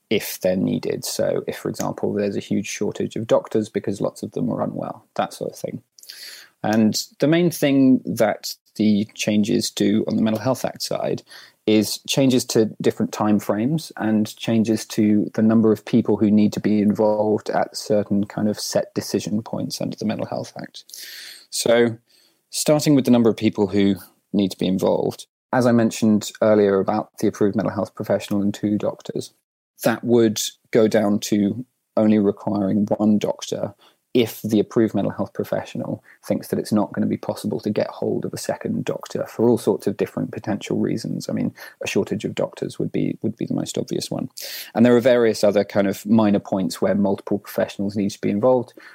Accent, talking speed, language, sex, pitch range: British, 195 wpm, English, male, 105-115 Hz